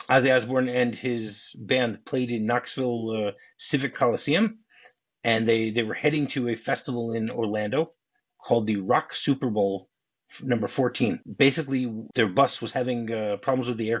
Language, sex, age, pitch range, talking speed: English, male, 30-49, 115-135 Hz, 165 wpm